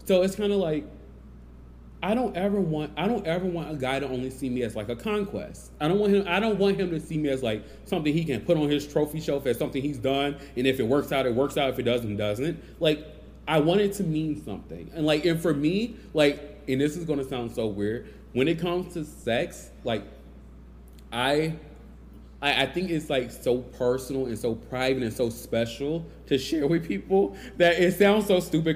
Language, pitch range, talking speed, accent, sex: English, 115-165 Hz, 230 wpm, American, male